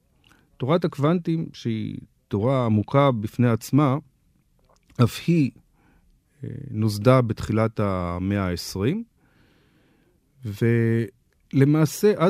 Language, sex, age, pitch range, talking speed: Hebrew, male, 40-59, 105-140 Hz, 70 wpm